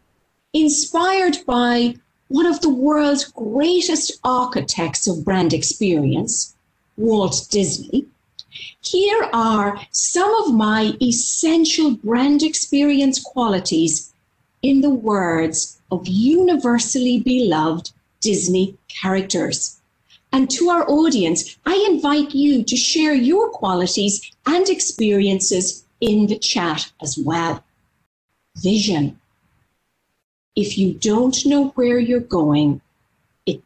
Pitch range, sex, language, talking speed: 170-265 Hz, female, English, 100 wpm